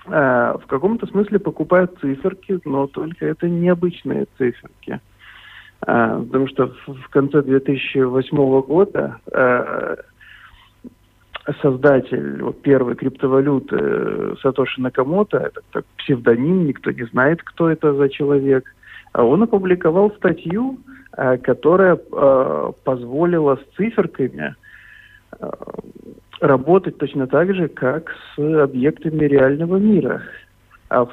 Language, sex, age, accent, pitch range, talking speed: Russian, male, 50-69, native, 135-170 Hz, 90 wpm